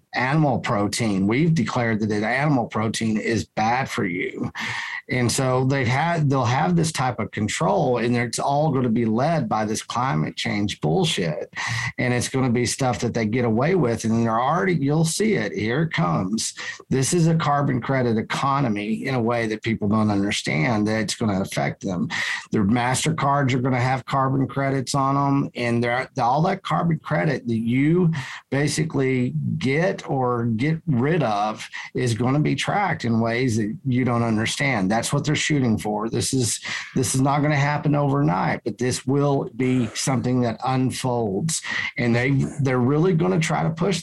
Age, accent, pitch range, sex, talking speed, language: 50-69, American, 115-145 Hz, male, 185 wpm, English